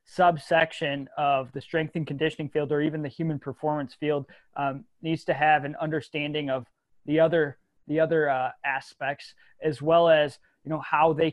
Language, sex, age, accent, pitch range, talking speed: English, male, 20-39, American, 135-155 Hz, 175 wpm